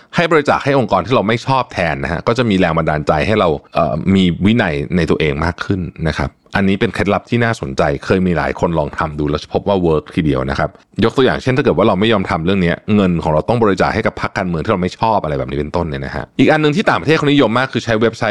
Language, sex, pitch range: Thai, male, 85-115 Hz